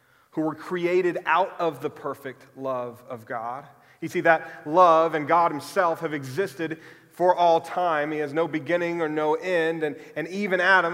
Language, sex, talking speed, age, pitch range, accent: English, male, 180 wpm, 30-49, 145-185 Hz, American